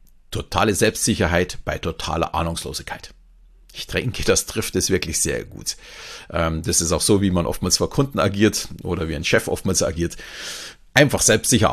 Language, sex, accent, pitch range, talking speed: German, male, German, 90-115 Hz, 160 wpm